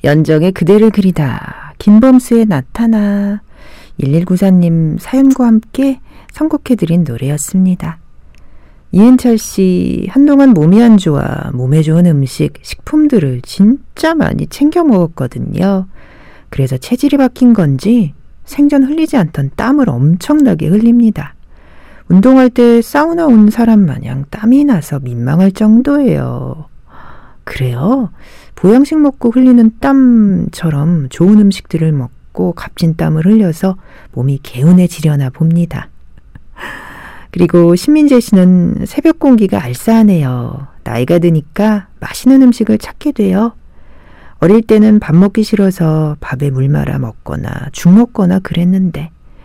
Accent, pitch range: native, 150-230 Hz